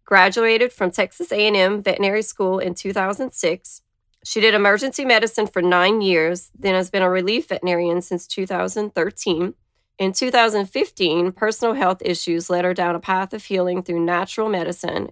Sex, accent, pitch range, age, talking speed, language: female, American, 175-215 Hz, 30-49, 150 wpm, English